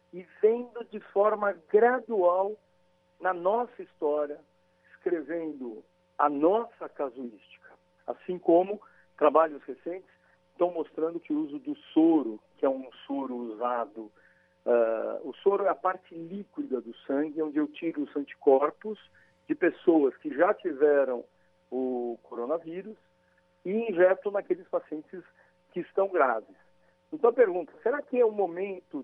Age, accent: 60-79, Brazilian